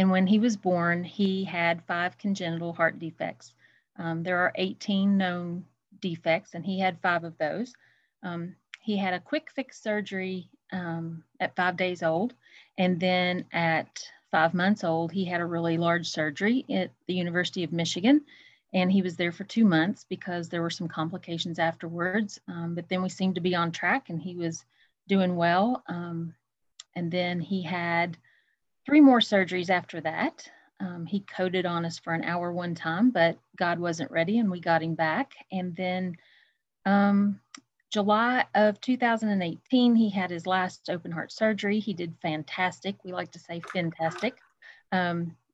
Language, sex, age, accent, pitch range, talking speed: English, female, 40-59, American, 170-200 Hz, 170 wpm